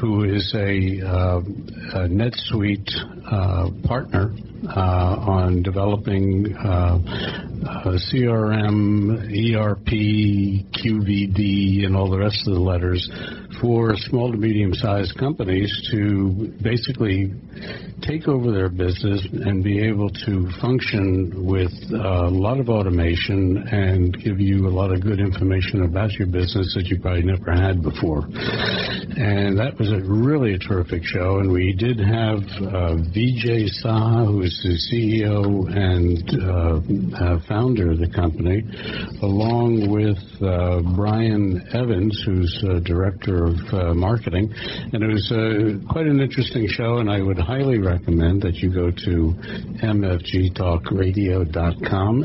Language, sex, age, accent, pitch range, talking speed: English, male, 60-79, American, 90-110 Hz, 130 wpm